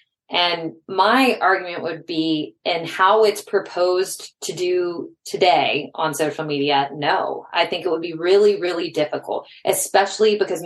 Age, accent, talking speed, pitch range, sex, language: 30-49, American, 145 wpm, 155-185 Hz, female, English